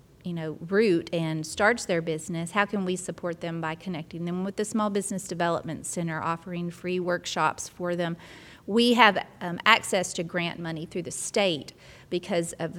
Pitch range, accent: 165-185 Hz, American